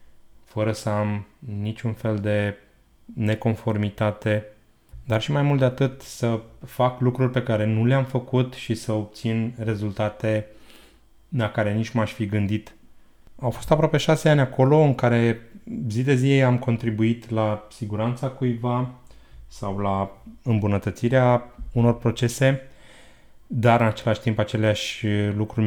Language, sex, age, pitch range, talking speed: Romanian, male, 20-39, 105-125 Hz, 135 wpm